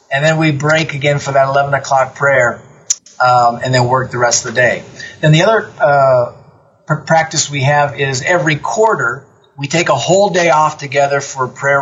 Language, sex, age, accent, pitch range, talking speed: English, male, 40-59, American, 130-160 Hz, 200 wpm